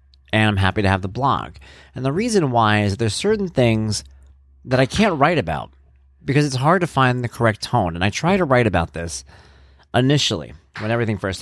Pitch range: 95-140 Hz